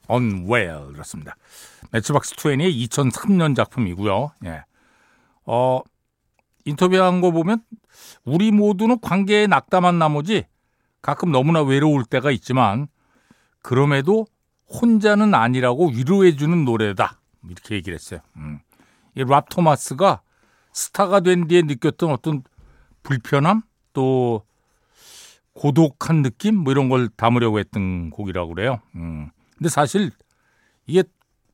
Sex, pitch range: male, 120-180 Hz